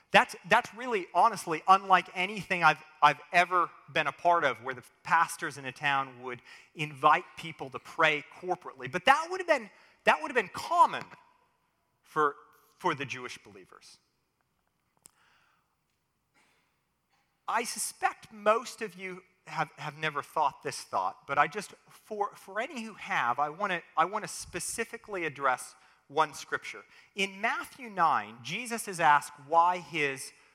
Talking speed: 145 wpm